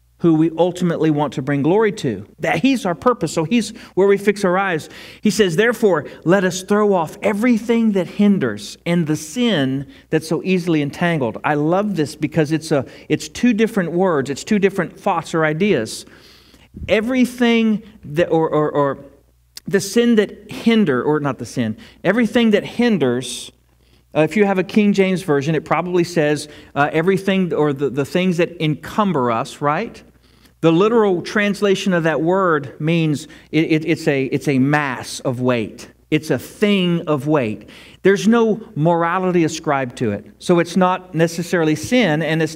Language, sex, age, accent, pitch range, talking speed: English, male, 40-59, American, 145-195 Hz, 165 wpm